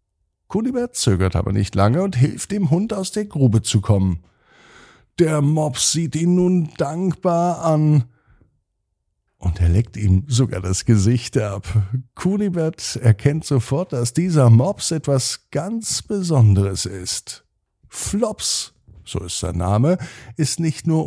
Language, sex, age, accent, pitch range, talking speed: German, male, 50-69, German, 100-155 Hz, 135 wpm